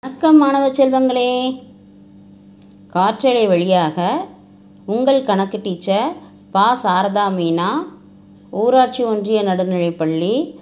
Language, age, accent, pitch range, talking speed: Tamil, 20-39, native, 150-225 Hz, 80 wpm